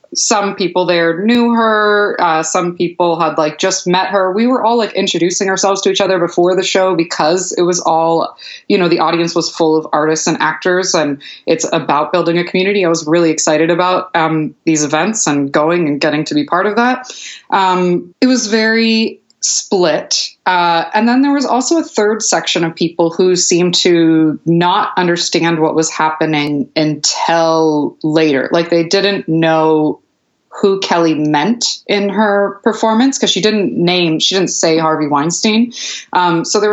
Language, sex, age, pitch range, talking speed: English, female, 20-39, 155-190 Hz, 180 wpm